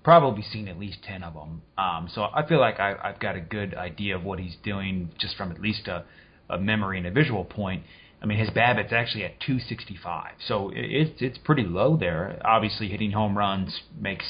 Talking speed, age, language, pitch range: 220 wpm, 30-49, English, 95-115 Hz